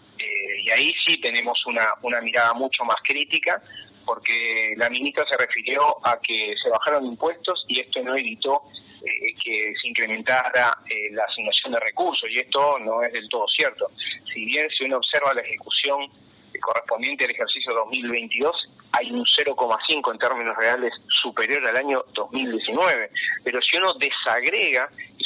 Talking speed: 160 wpm